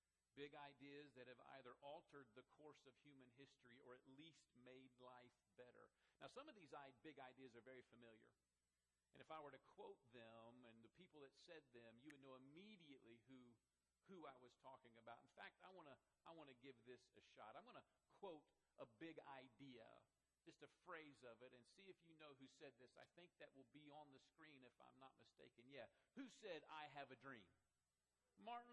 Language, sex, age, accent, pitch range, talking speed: English, male, 50-69, American, 130-185 Hz, 210 wpm